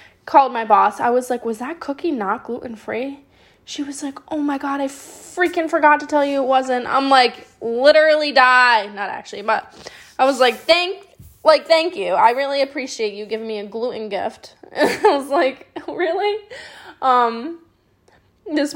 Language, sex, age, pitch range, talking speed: English, female, 10-29, 210-275 Hz, 175 wpm